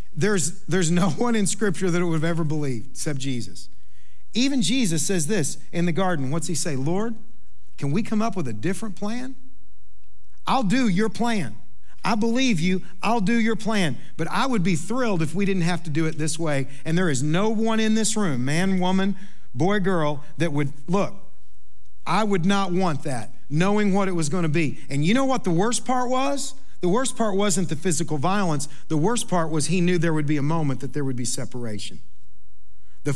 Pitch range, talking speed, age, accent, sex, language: 130-200 Hz, 210 wpm, 50-69, American, male, English